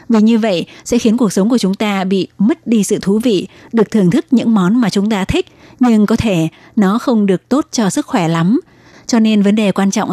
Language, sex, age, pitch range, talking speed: Vietnamese, female, 20-39, 190-230 Hz, 250 wpm